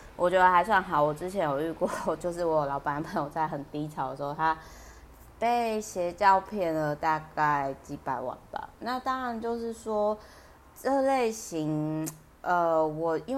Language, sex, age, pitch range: Chinese, female, 30-49, 135-180 Hz